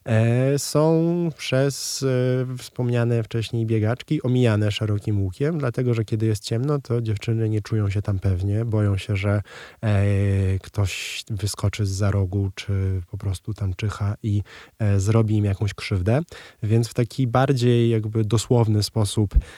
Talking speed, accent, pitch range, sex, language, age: 150 wpm, native, 100-115 Hz, male, Polish, 20-39